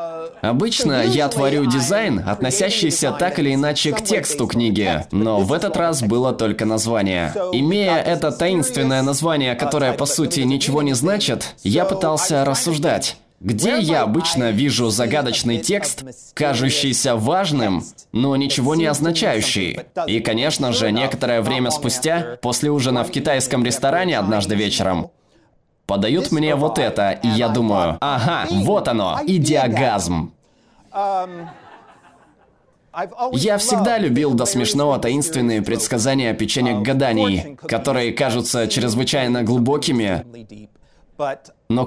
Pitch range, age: 115-150 Hz, 20-39